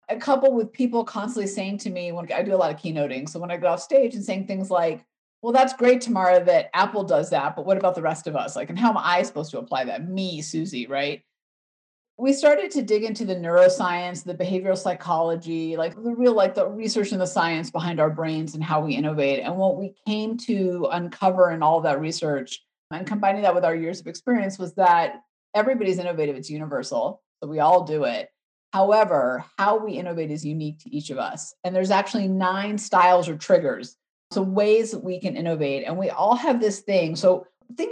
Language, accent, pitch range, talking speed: English, American, 170-220 Hz, 220 wpm